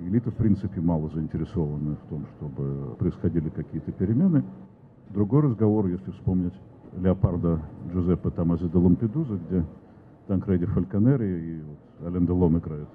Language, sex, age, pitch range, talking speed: Russian, male, 50-69, 85-110 Hz, 135 wpm